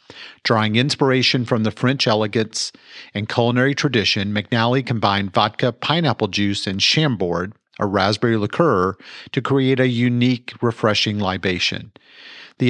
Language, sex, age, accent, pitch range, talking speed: English, male, 40-59, American, 105-130 Hz, 125 wpm